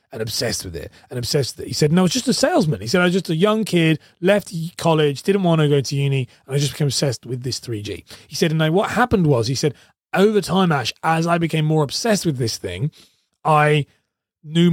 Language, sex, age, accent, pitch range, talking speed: English, male, 30-49, British, 135-175 Hz, 245 wpm